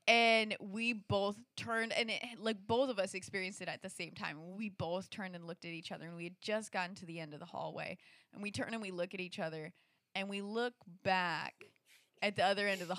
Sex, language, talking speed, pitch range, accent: female, English, 250 wpm, 195-275 Hz, American